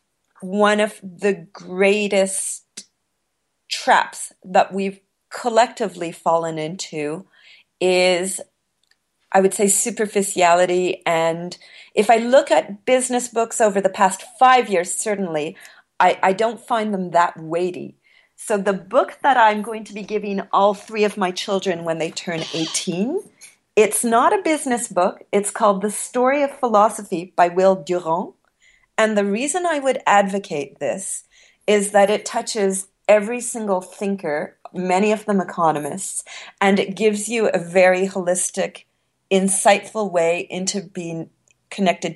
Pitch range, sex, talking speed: 180-215 Hz, female, 140 wpm